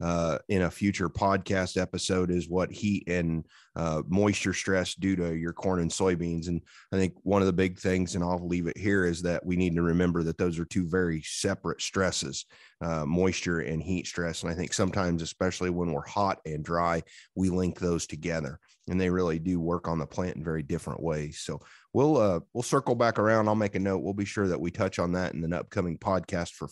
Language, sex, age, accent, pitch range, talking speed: English, male, 30-49, American, 85-100 Hz, 225 wpm